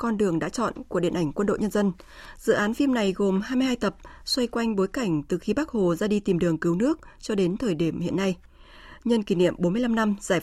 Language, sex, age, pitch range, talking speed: Vietnamese, female, 20-39, 180-240 Hz, 255 wpm